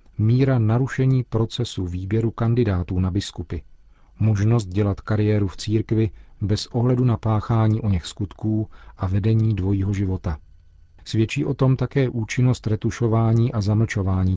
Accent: native